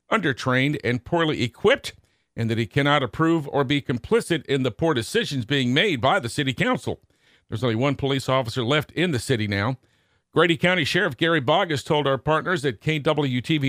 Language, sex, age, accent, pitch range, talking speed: English, male, 50-69, American, 125-155 Hz, 185 wpm